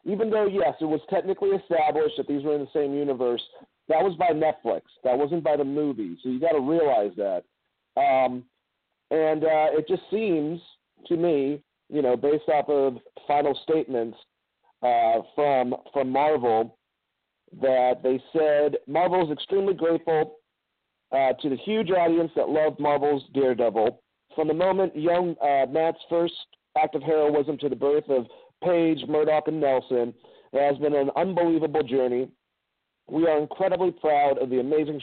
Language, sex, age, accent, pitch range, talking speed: English, male, 40-59, American, 130-155 Hz, 165 wpm